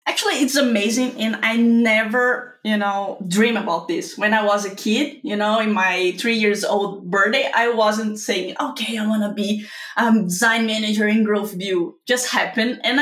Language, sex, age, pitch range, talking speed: English, female, 20-39, 205-235 Hz, 195 wpm